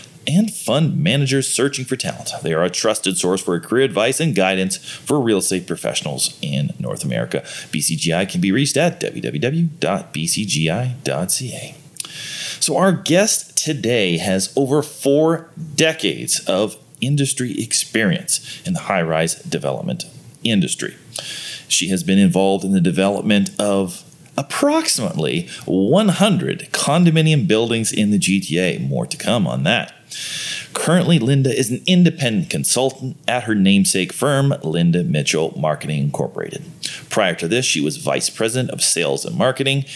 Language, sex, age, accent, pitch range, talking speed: English, male, 30-49, American, 100-165 Hz, 135 wpm